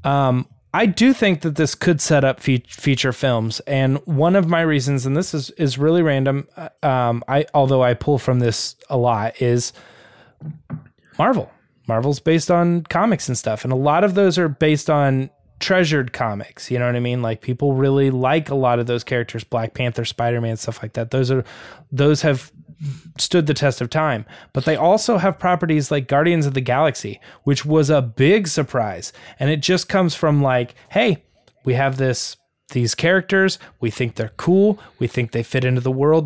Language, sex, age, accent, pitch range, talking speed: English, male, 20-39, American, 125-170 Hz, 195 wpm